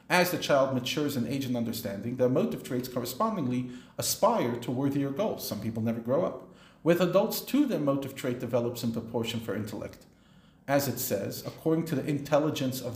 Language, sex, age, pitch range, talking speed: English, male, 50-69, 120-150 Hz, 185 wpm